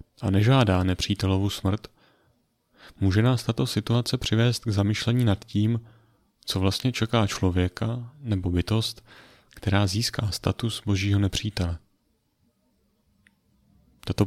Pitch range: 95-110 Hz